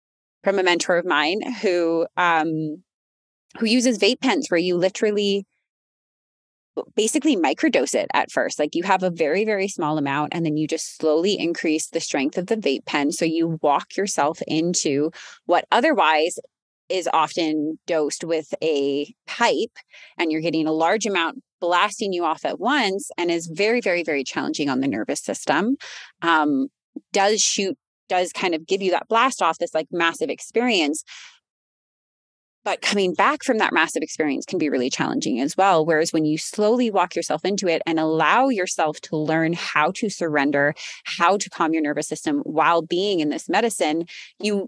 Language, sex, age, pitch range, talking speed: English, female, 20-39, 160-230 Hz, 175 wpm